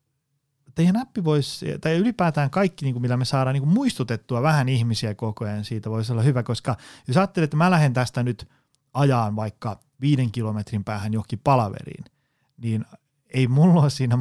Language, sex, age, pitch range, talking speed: Finnish, male, 30-49, 115-150 Hz, 160 wpm